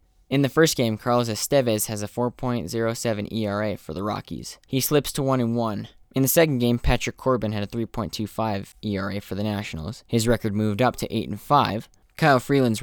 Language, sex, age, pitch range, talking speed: English, male, 10-29, 100-120 Hz, 185 wpm